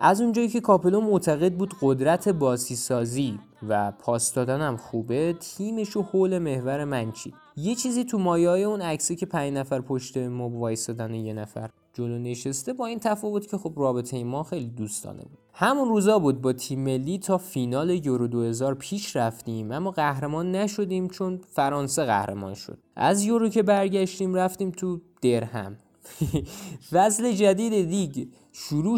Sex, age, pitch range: male, 20-39, 120-185 Hz